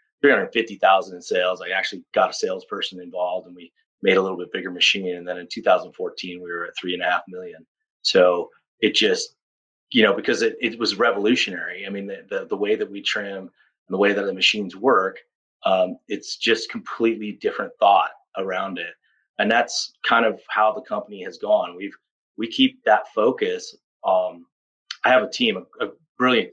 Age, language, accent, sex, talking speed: 30-49, English, American, male, 200 wpm